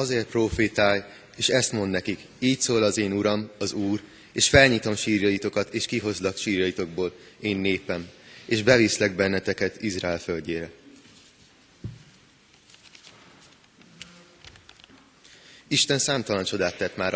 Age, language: 30-49, Hungarian